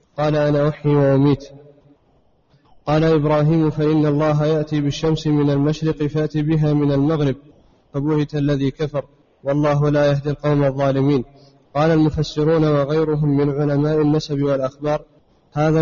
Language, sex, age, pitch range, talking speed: Arabic, male, 20-39, 145-155 Hz, 120 wpm